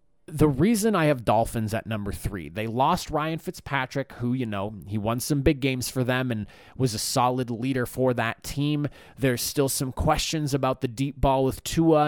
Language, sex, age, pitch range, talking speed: English, male, 20-39, 115-135 Hz, 200 wpm